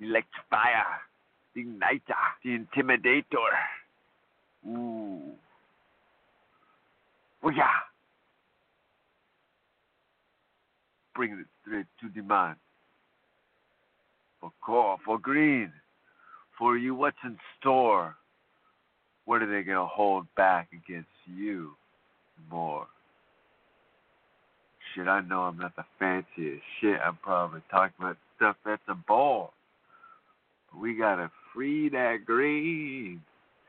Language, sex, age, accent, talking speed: English, male, 60-79, American, 100 wpm